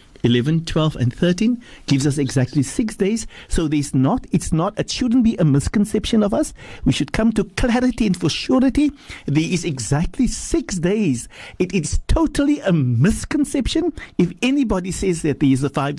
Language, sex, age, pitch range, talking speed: English, male, 60-79, 135-205 Hz, 175 wpm